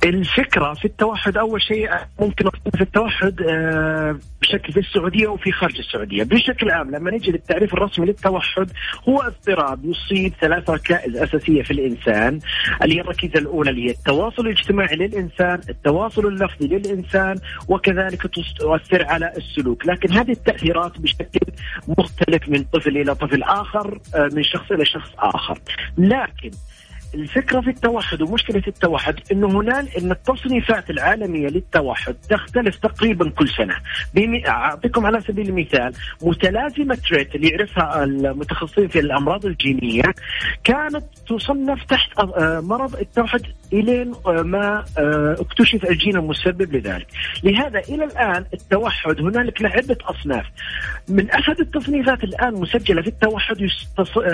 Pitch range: 165-225 Hz